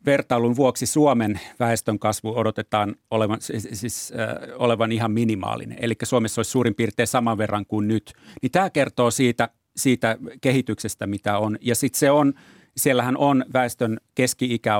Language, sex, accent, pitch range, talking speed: Finnish, male, native, 105-125 Hz, 150 wpm